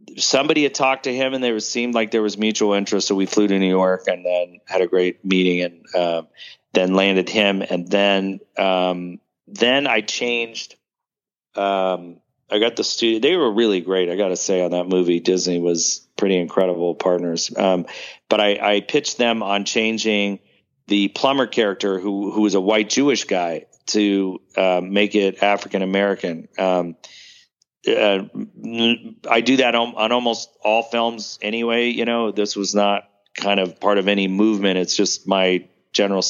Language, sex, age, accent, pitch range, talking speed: English, male, 40-59, American, 95-110 Hz, 180 wpm